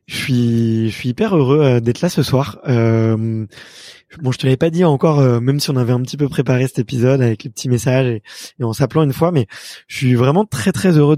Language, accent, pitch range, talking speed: French, French, 120-150 Hz, 260 wpm